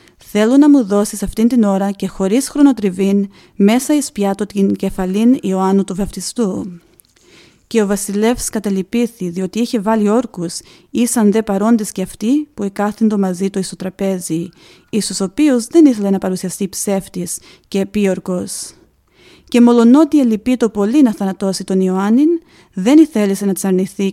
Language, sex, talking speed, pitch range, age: Greek, female, 145 wpm, 190-230 Hz, 30-49